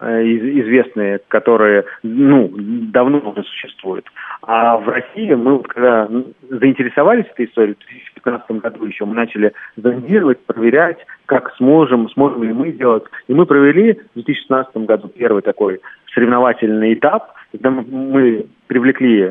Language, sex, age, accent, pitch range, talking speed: Russian, male, 40-59, native, 115-135 Hz, 130 wpm